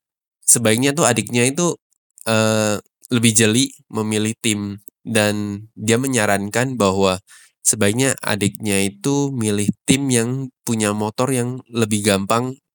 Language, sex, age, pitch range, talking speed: Indonesian, male, 20-39, 100-115 Hz, 115 wpm